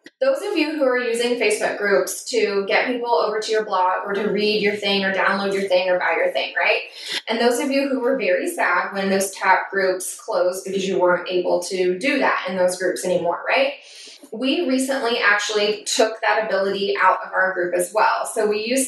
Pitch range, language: 195-270 Hz, English